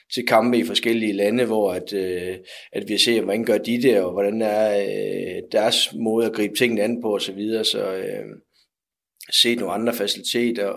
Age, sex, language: 30-49, male, Danish